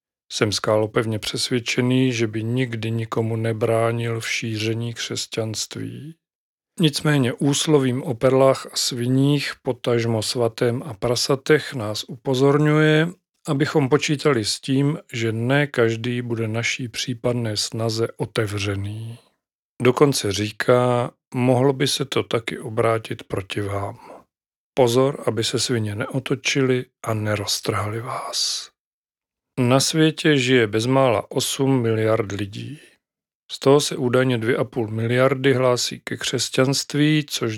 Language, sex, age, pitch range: Czech, male, 40-59, 115-135 Hz